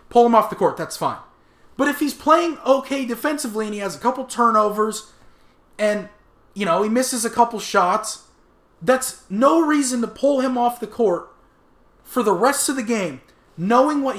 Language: English